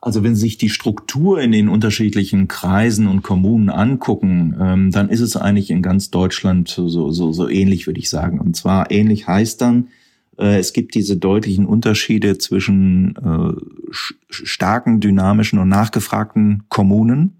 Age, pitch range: 30-49, 95-105 Hz